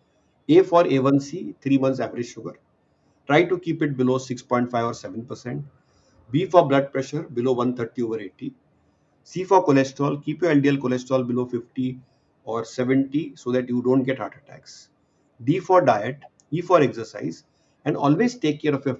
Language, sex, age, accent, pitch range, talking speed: English, male, 50-69, Indian, 125-150 Hz, 170 wpm